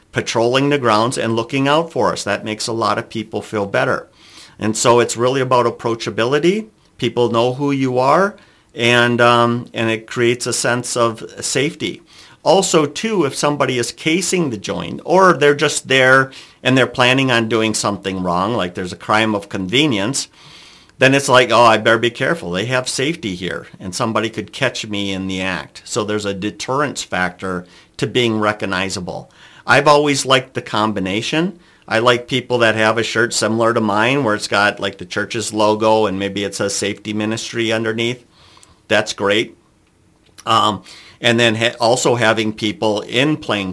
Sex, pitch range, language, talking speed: male, 105-130 Hz, English, 175 wpm